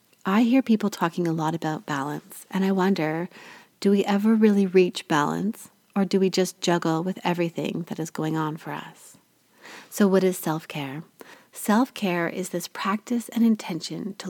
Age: 30-49